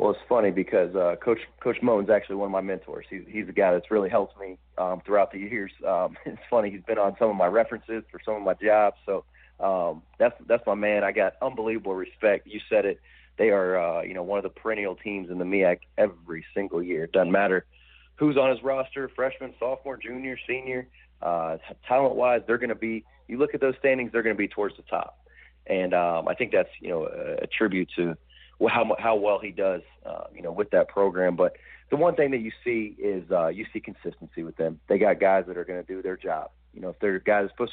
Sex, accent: male, American